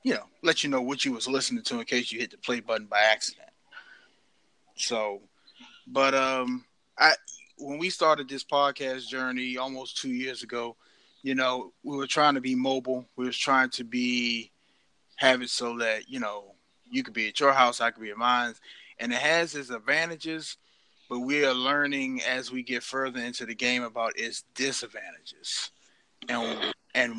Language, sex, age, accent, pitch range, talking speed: English, male, 20-39, American, 120-145 Hz, 185 wpm